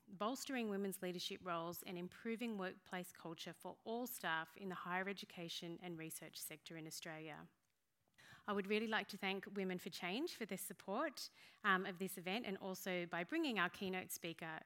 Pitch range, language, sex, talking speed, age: 180-235 Hz, English, female, 175 wpm, 30-49